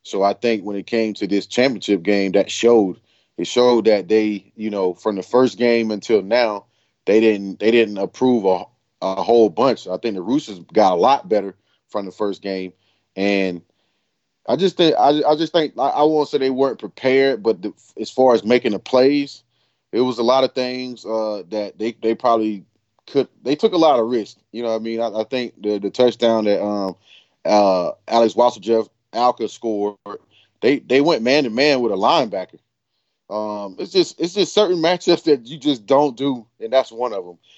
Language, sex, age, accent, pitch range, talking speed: English, male, 30-49, American, 100-125 Hz, 210 wpm